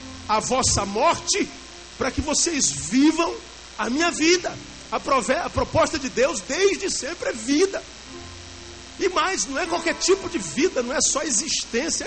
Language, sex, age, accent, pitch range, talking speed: Portuguese, male, 50-69, Brazilian, 210-315 Hz, 160 wpm